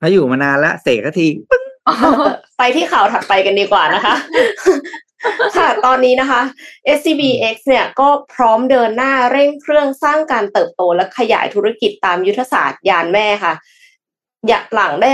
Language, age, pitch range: Thai, 20-39, 190-255 Hz